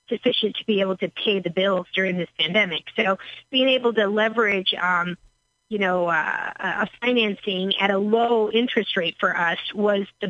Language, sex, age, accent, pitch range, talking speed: English, female, 40-59, American, 185-230 Hz, 180 wpm